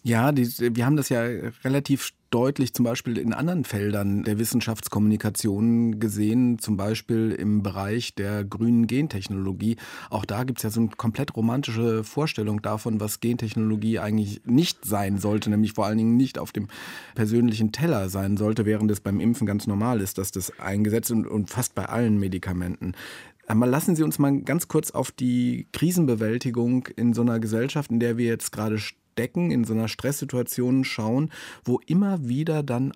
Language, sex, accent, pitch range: German, male, German, 105-125 Hz